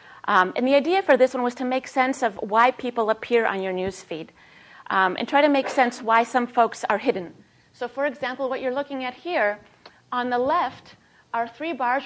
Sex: female